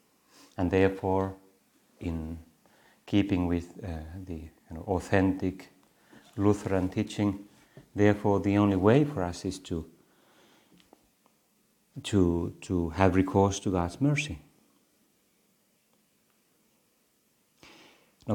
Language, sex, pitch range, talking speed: Finnish, male, 85-110 Hz, 90 wpm